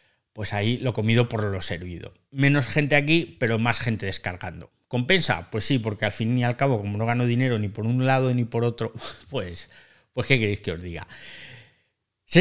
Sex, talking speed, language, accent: male, 205 wpm, Spanish, Spanish